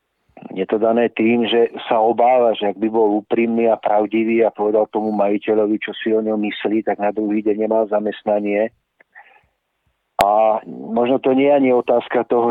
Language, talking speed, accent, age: Czech, 175 wpm, native, 40-59